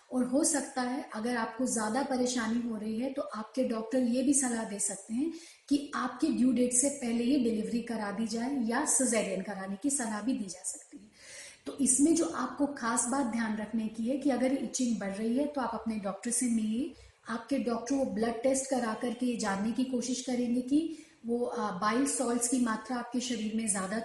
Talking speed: 205 wpm